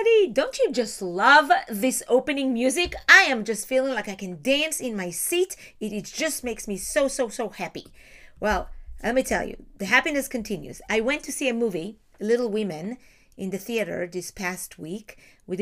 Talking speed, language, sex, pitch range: 190 wpm, English, female, 205-280 Hz